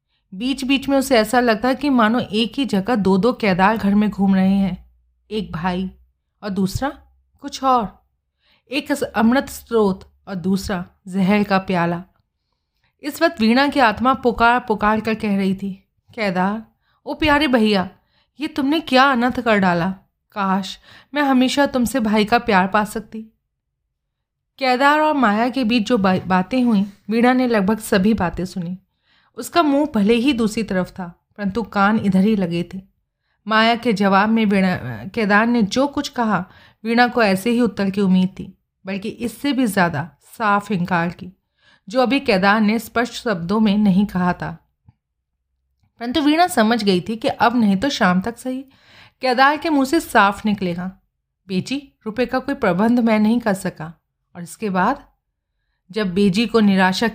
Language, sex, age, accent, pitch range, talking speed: Hindi, female, 30-49, native, 190-245 Hz, 170 wpm